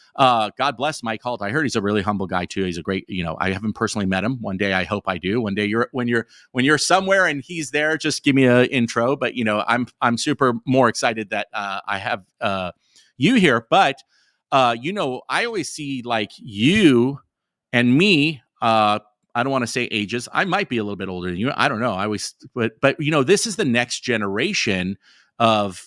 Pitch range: 105-140 Hz